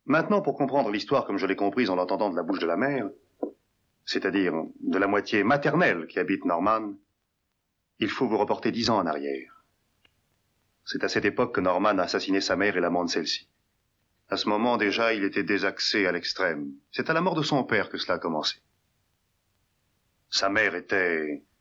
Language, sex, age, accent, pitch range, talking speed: French, male, 40-59, French, 95-150 Hz, 190 wpm